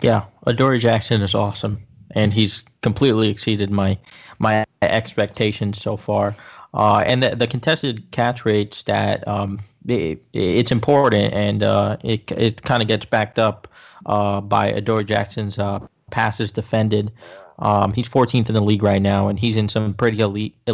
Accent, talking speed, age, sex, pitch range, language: American, 160 wpm, 20-39, male, 105-120 Hz, English